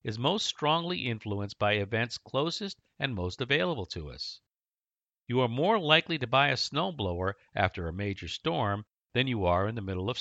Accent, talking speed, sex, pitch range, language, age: American, 180 wpm, male, 105-155 Hz, English, 50-69